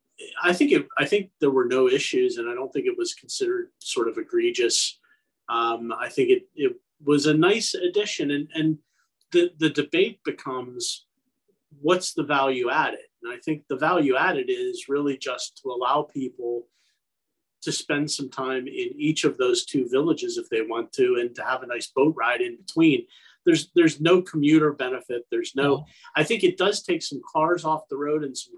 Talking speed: 195 wpm